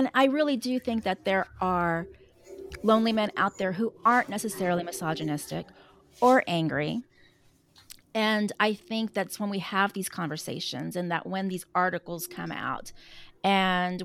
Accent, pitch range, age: American, 185-235 Hz, 30-49